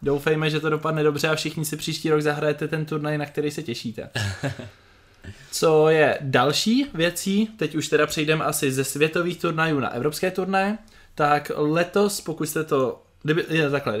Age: 20-39